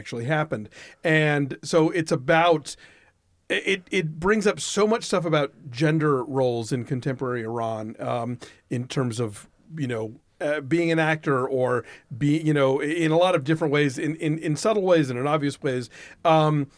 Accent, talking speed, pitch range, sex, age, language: American, 175 wpm, 135-170 Hz, male, 40-59, English